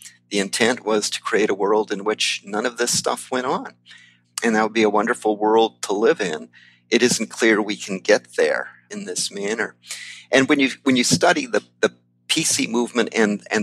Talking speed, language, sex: 205 wpm, English, male